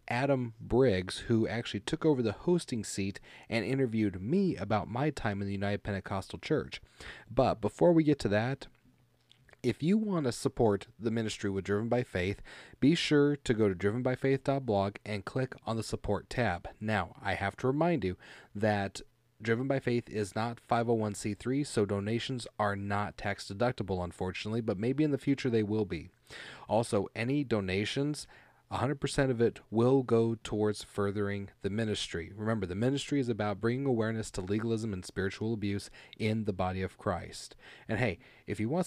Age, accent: 30-49, American